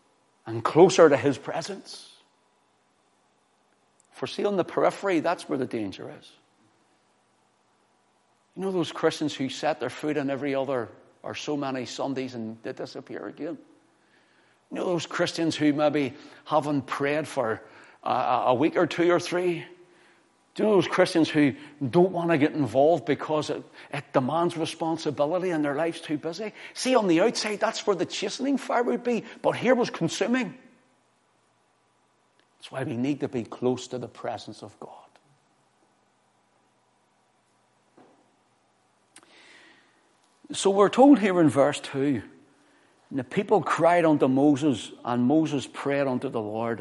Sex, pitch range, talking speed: male, 135-175 Hz, 150 wpm